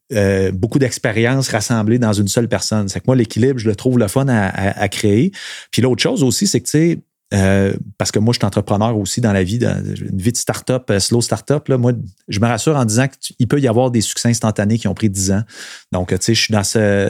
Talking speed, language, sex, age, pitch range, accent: 260 wpm, French, male, 30-49, 105-130 Hz, Canadian